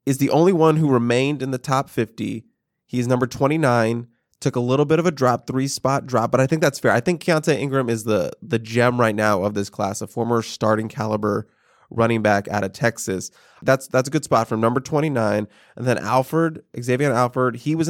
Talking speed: 215 wpm